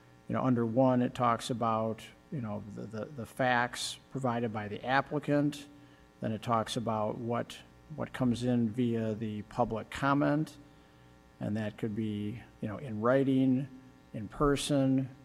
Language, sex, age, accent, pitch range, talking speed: English, male, 50-69, American, 105-130 Hz, 155 wpm